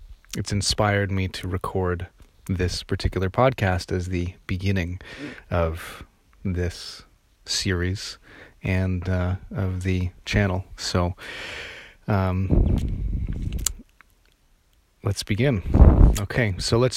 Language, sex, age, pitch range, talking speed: English, male, 30-49, 90-100 Hz, 90 wpm